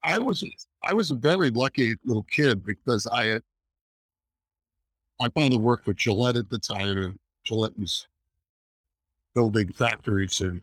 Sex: male